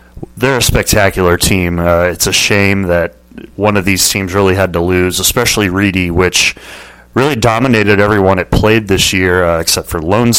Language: English